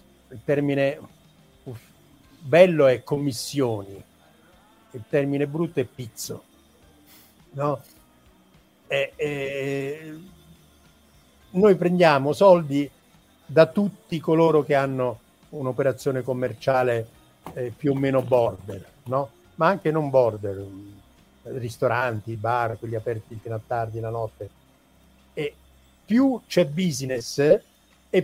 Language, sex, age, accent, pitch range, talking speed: Italian, male, 50-69, native, 115-160 Hz, 100 wpm